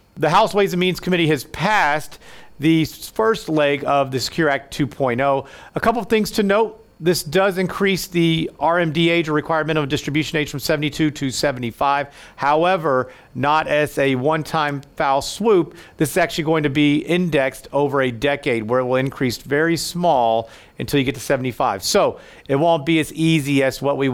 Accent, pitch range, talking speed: American, 140-175 Hz, 185 wpm